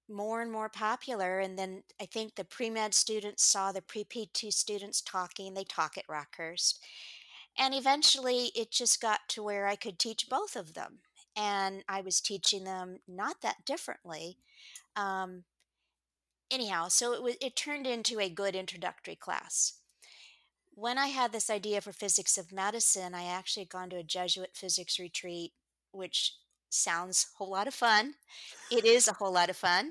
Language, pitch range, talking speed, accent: English, 180-235 Hz, 175 wpm, American